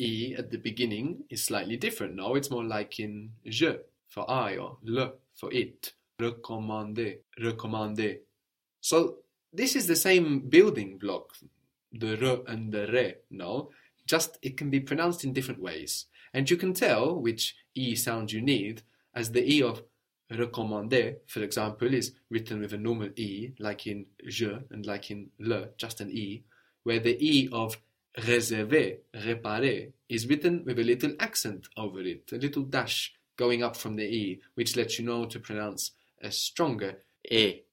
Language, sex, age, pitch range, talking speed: English, male, 20-39, 110-130 Hz, 165 wpm